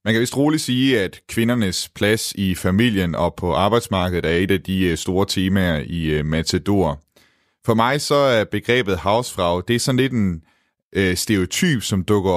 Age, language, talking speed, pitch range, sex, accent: 30-49, Danish, 170 wpm, 90-115 Hz, male, native